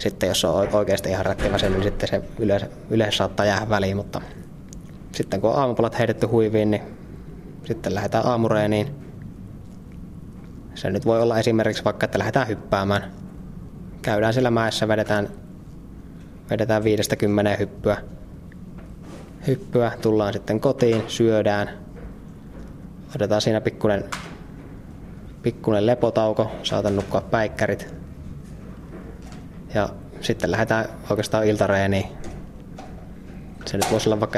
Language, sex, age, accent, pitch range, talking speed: Finnish, male, 20-39, native, 100-115 Hz, 115 wpm